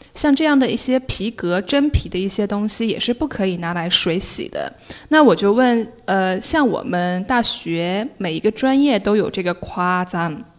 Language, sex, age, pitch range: Chinese, female, 10-29, 180-250 Hz